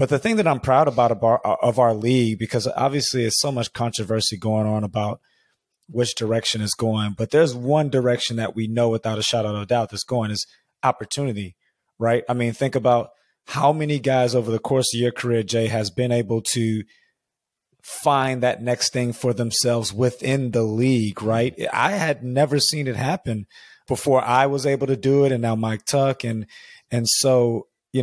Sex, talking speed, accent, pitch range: male, 195 wpm, American, 115-130 Hz